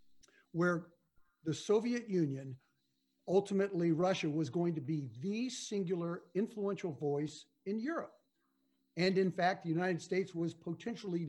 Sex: male